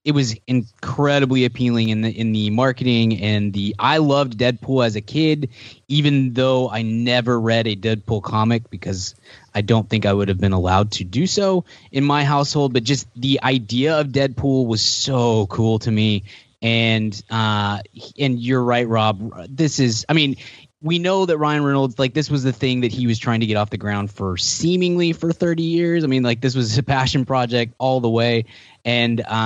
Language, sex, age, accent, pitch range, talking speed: English, male, 20-39, American, 105-130 Hz, 200 wpm